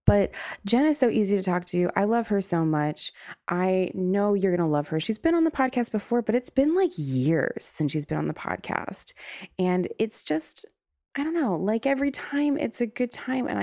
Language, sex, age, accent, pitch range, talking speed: English, female, 20-39, American, 145-205 Hz, 230 wpm